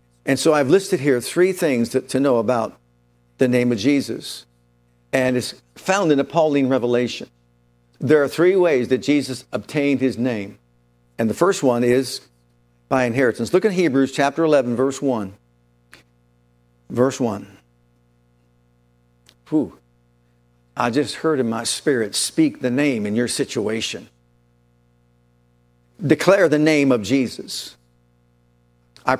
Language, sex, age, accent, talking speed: English, male, 50-69, American, 135 wpm